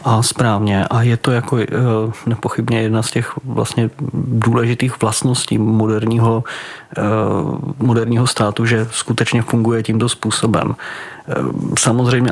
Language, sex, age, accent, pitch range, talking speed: Czech, male, 30-49, native, 110-120 Hz, 105 wpm